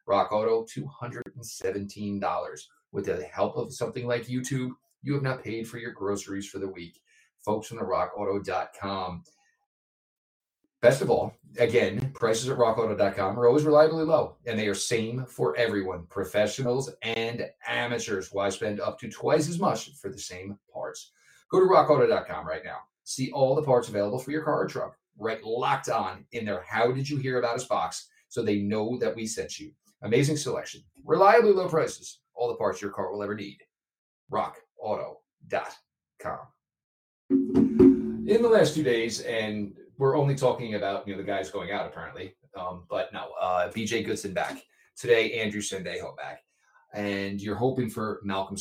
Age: 30-49